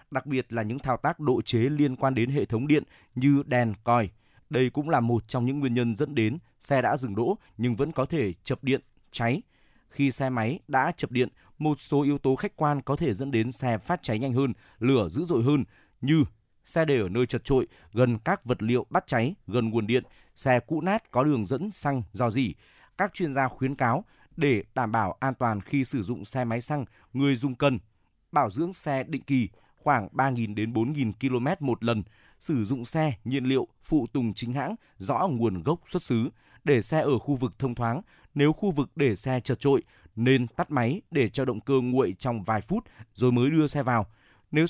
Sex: male